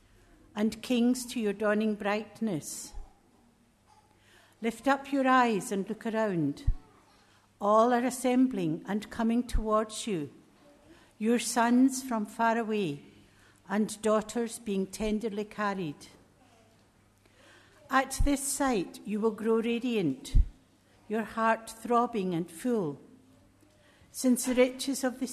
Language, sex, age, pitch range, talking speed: English, female, 60-79, 165-240 Hz, 110 wpm